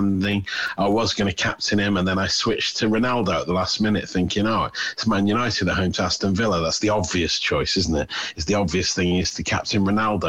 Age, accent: 30-49, British